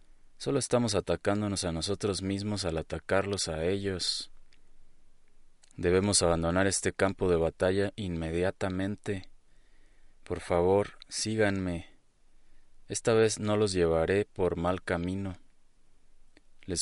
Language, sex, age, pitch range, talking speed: Spanish, male, 30-49, 85-100 Hz, 105 wpm